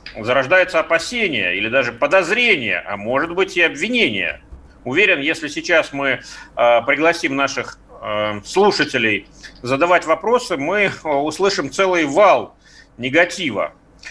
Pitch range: 120-180 Hz